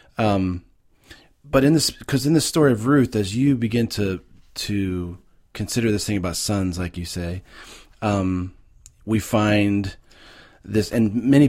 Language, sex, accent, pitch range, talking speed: English, male, American, 95-115 Hz, 150 wpm